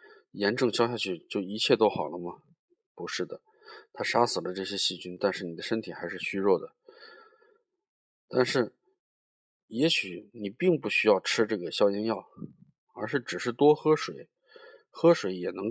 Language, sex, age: Chinese, male, 20-39